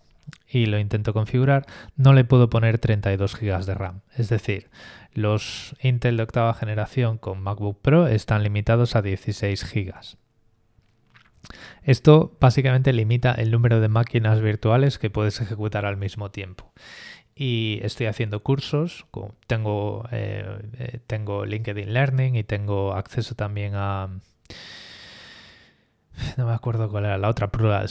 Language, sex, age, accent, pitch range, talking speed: Spanish, male, 20-39, Spanish, 105-125 Hz, 135 wpm